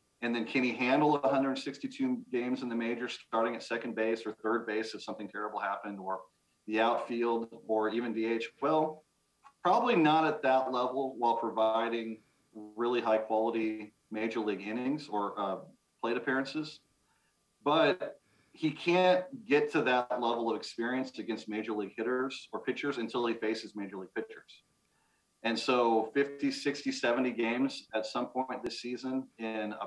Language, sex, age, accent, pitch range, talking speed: English, male, 40-59, American, 110-125 Hz, 155 wpm